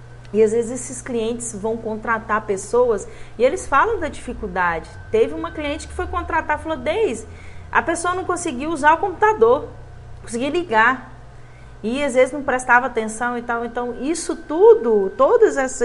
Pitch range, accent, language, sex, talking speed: 215-300 Hz, Brazilian, Portuguese, female, 165 wpm